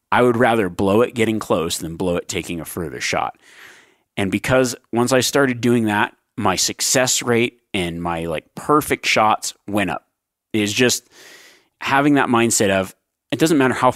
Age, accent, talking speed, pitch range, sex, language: 30-49, American, 175 wpm, 100-130 Hz, male, English